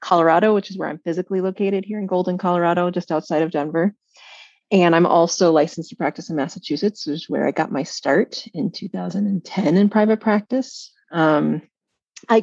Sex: female